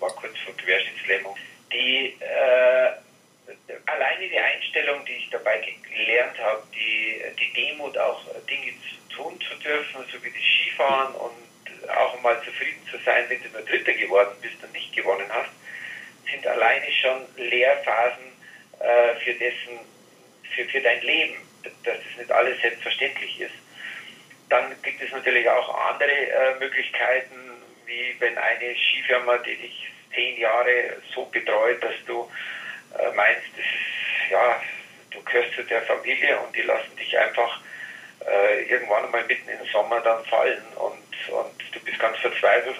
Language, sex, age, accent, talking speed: German, male, 50-69, German, 155 wpm